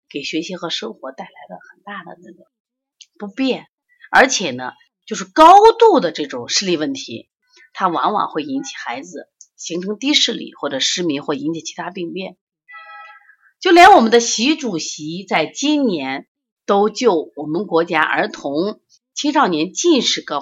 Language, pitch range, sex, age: Chinese, 165-275 Hz, female, 30-49